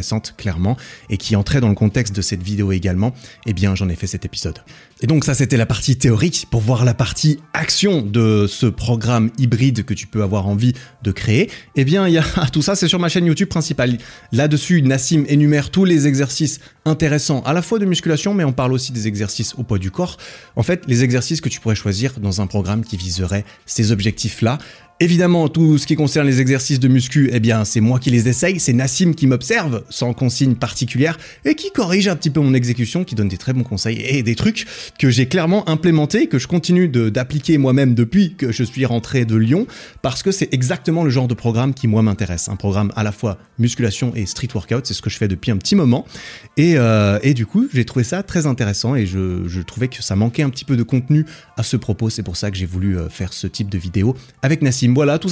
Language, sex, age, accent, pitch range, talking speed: French, male, 30-49, French, 110-150 Hz, 240 wpm